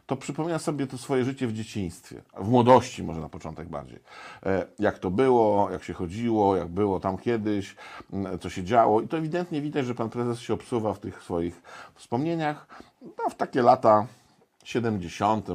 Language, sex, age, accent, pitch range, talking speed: Polish, male, 50-69, native, 100-130 Hz, 170 wpm